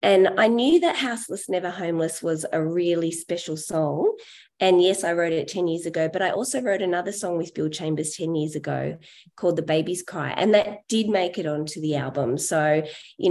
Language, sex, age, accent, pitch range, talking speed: English, female, 20-39, Australian, 160-265 Hz, 210 wpm